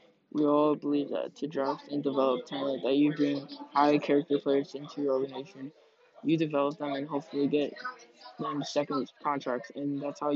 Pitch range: 135-150 Hz